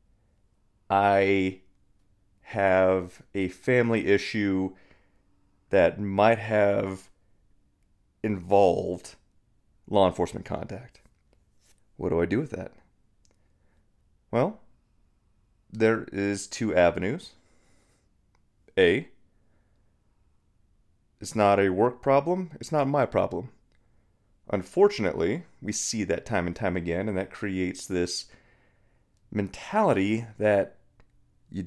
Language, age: English, 30-49